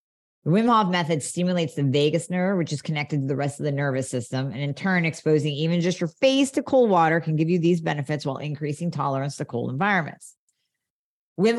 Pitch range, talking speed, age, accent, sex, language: 145-175 Hz, 210 wpm, 40-59, American, female, English